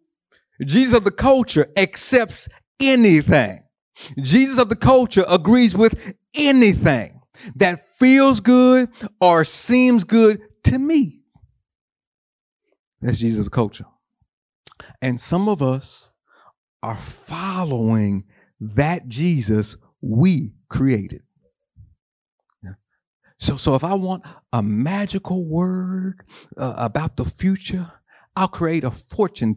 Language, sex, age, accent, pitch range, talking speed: English, male, 50-69, American, 120-190 Hz, 105 wpm